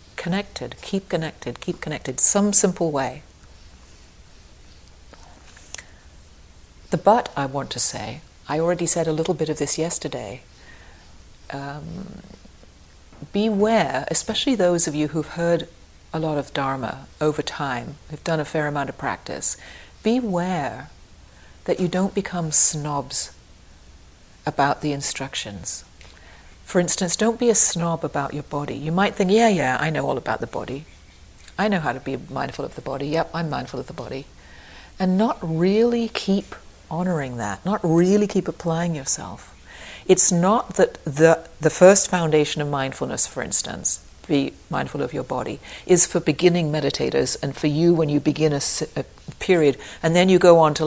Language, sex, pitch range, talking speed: English, female, 120-180 Hz, 160 wpm